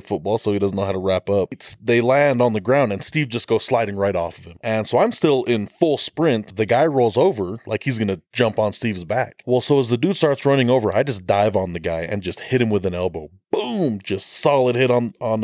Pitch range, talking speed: 100-125 Hz, 265 wpm